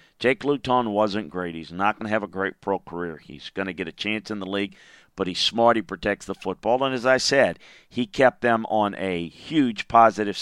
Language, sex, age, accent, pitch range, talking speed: English, male, 50-69, American, 100-130 Hz, 230 wpm